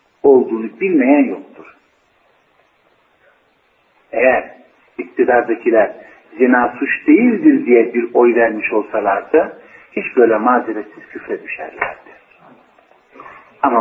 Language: Turkish